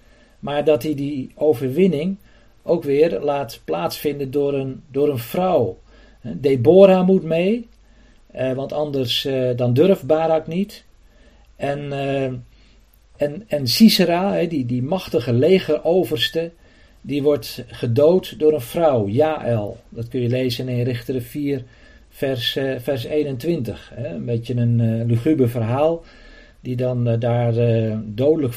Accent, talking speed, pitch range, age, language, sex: Dutch, 130 wpm, 115-145 Hz, 50-69, Dutch, male